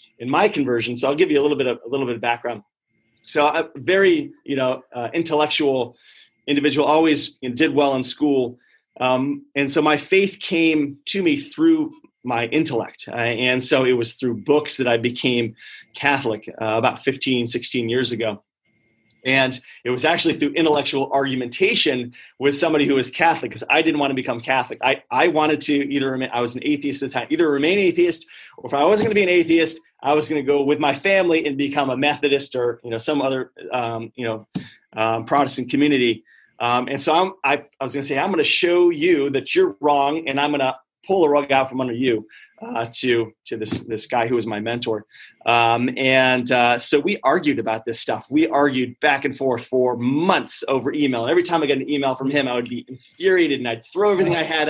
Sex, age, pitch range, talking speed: male, 30-49, 125-155 Hz, 215 wpm